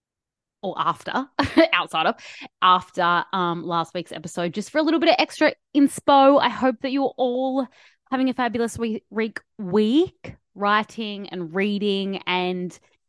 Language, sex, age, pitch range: English, female, 20-39, 175-230 Hz